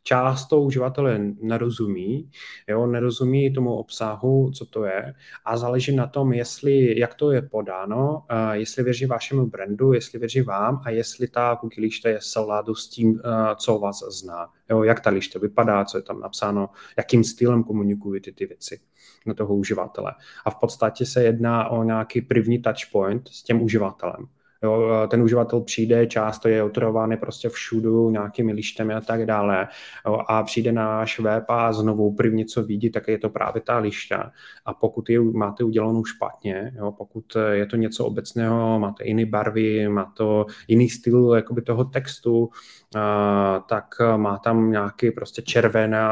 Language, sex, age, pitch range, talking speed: Czech, male, 30-49, 110-120 Hz, 165 wpm